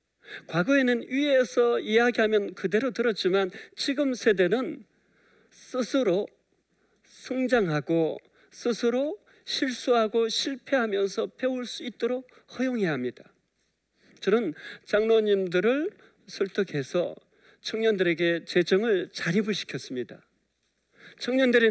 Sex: male